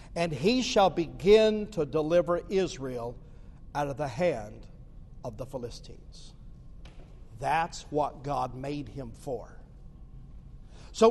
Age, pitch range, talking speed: 50-69, 160-225 Hz, 115 wpm